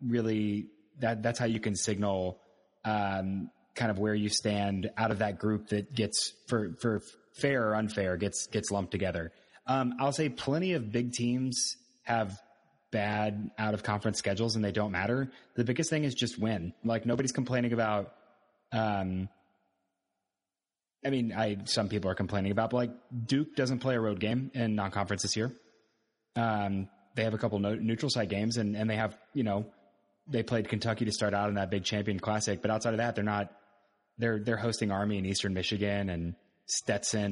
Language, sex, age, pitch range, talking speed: English, male, 20-39, 100-120 Hz, 185 wpm